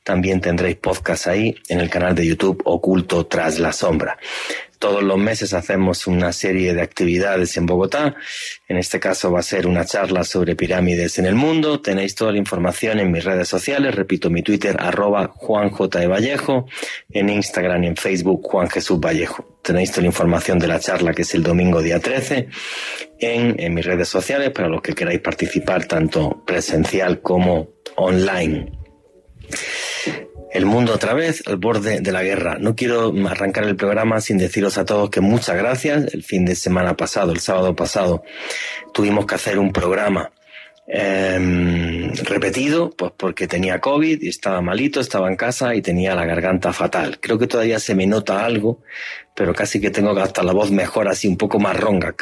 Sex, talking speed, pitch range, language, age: male, 180 wpm, 90-110 Hz, Spanish, 30-49